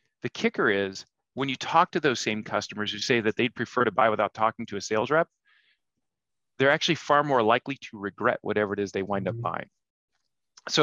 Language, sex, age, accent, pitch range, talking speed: English, male, 30-49, American, 110-135 Hz, 210 wpm